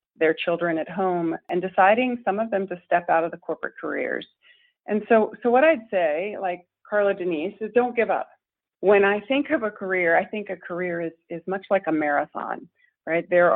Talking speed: 210 wpm